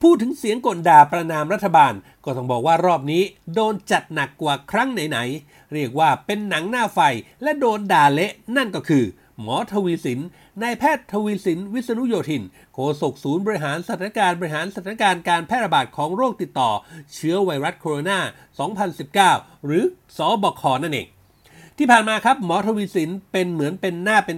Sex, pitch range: male, 145-210 Hz